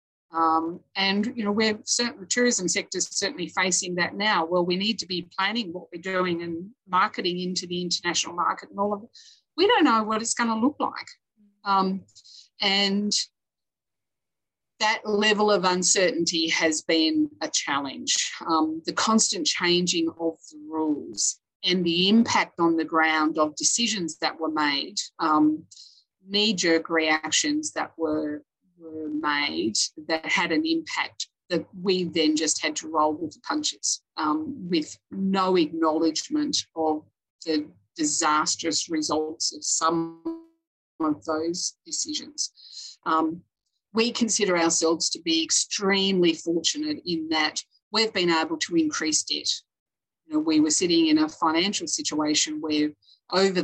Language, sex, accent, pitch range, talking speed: English, female, Australian, 160-225 Hz, 145 wpm